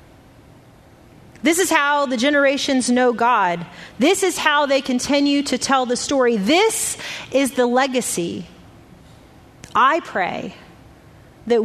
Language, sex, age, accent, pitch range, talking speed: English, female, 30-49, American, 230-270 Hz, 120 wpm